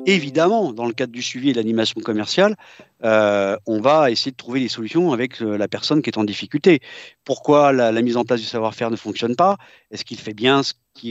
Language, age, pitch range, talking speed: French, 50-69, 115-145 Hz, 230 wpm